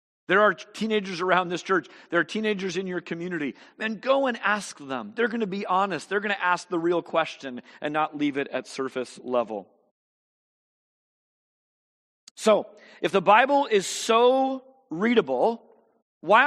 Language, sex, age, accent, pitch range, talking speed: English, male, 40-59, American, 160-220 Hz, 160 wpm